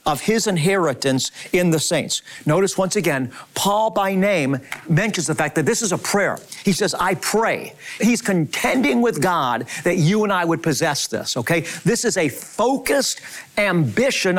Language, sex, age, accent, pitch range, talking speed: English, male, 50-69, American, 165-210 Hz, 170 wpm